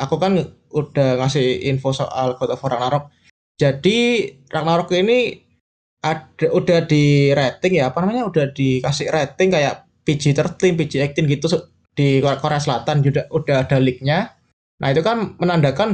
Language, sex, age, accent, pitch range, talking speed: Indonesian, male, 20-39, native, 140-170 Hz, 145 wpm